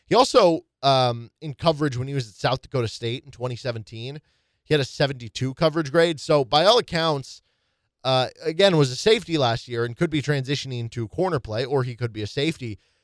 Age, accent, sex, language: 20-39, American, male, English